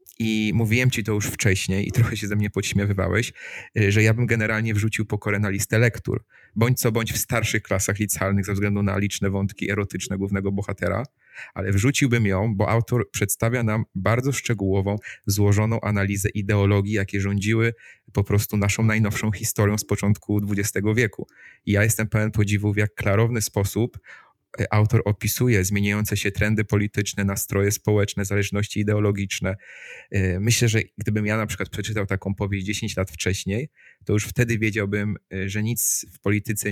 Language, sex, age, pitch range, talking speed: Polish, male, 30-49, 100-110 Hz, 160 wpm